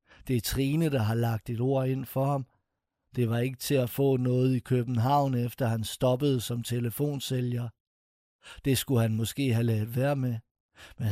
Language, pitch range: Danish, 120-145 Hz